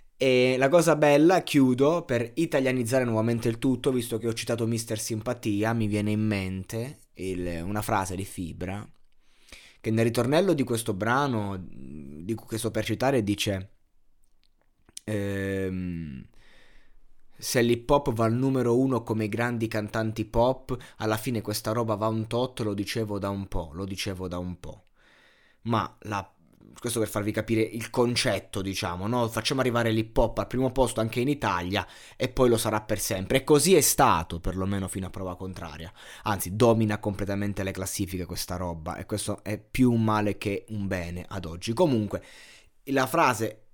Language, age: Italian, 20-39